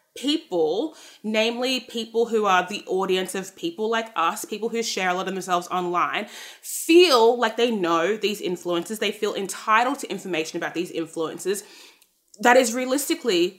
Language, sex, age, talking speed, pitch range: English, female, 20-39, 160 wpm, 205-285 Hz